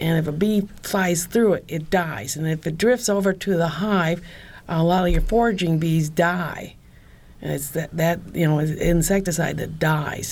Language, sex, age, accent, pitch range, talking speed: English, female, 50-69, American, 155-185 Hz, 190 wpm